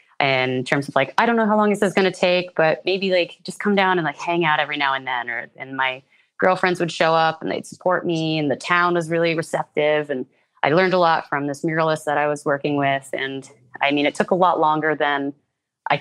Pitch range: 145-185 Hz